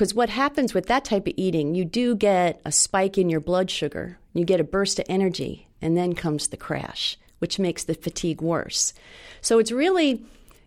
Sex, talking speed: female, 200 wpm